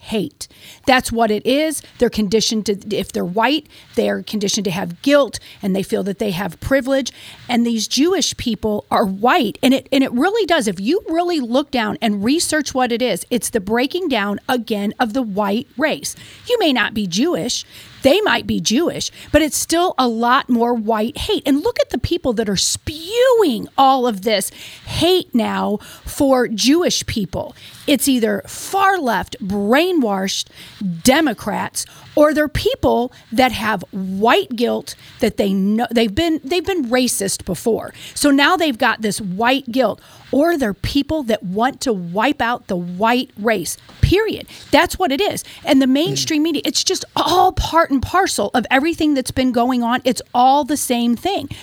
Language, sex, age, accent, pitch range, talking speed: English, female, 40-59, American, 220-300 Hz, 180 wpm